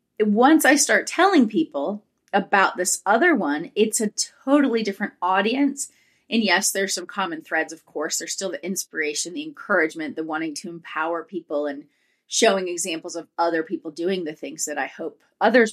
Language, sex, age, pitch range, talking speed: English, female, 30-49, 180-260 Hz, 175 wpm